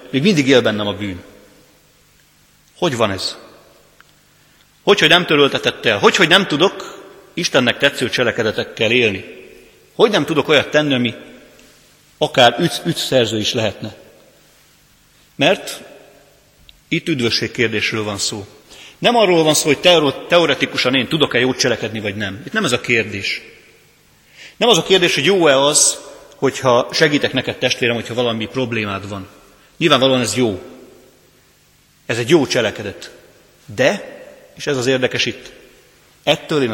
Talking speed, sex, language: 140 wpm, male, Hungarian